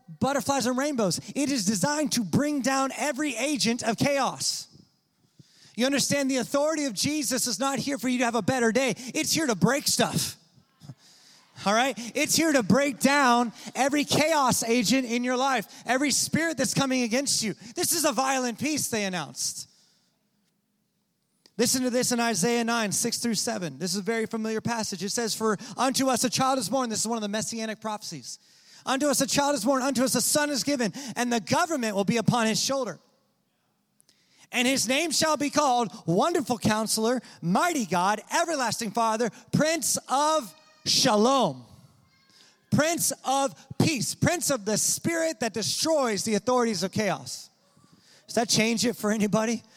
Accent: American